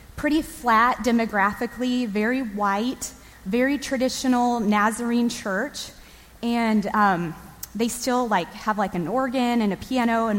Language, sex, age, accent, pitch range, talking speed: English, female, 20-39, American, 200-250 Hz, 125 wpm